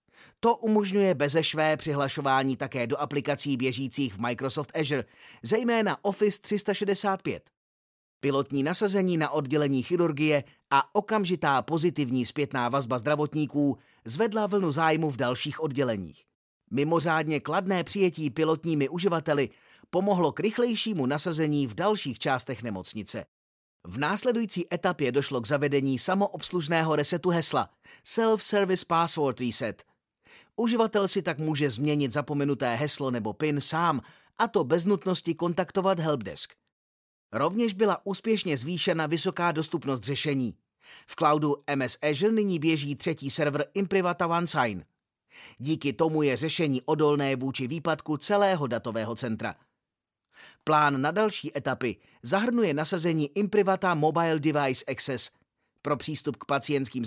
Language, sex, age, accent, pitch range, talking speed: Czech, male, 30-49, native, 140-180 Hz, 120 wpm